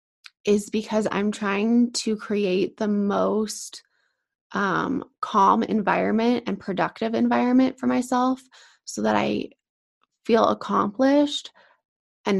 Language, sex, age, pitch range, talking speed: English, female, 20-39, 185-240 Hz, 105 wpm